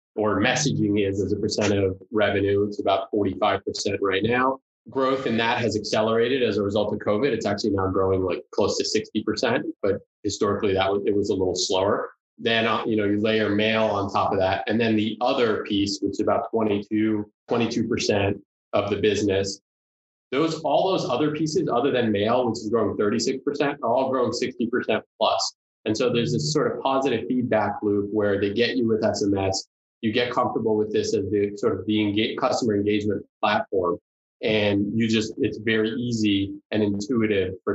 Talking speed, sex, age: 185 wpm, male, 20-39